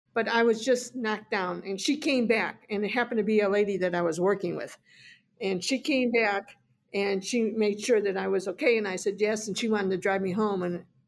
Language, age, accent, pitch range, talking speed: English, 50-69, American, 190-230 Hz, 250 wpm